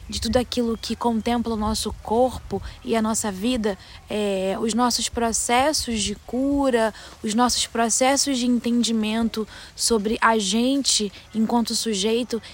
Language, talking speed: Portuguese, 135 wpm